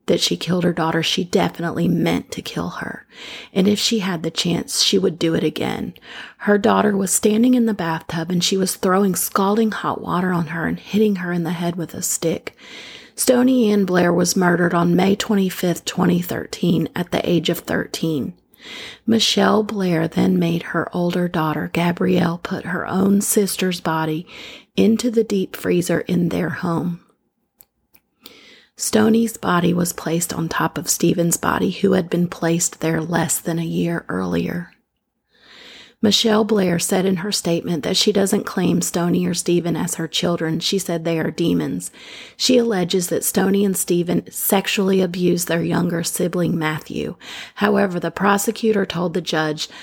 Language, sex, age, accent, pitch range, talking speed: English, female, 30-49, American, 165-205 Hz, 165 wpm